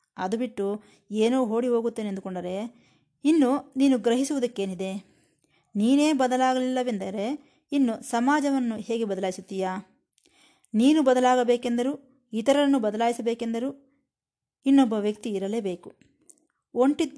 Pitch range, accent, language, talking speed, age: 200-260 Hz, native, Kannada, 80 wpm, 20-39